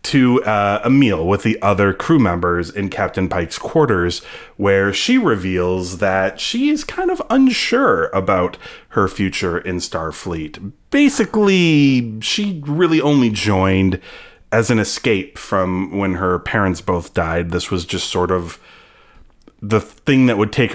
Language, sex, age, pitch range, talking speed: English, male, 30-49, 95-115 Hz, 145 wpm